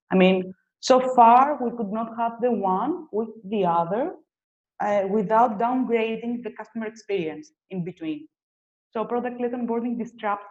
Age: 20-39